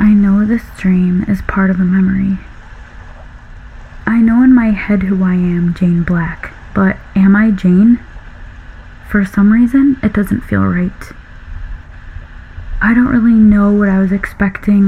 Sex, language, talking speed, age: female, English, 155 wpm, 20-39